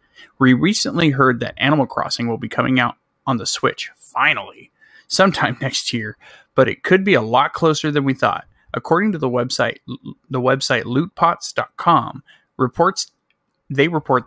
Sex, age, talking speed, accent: male, 30-49, 155 wpm, American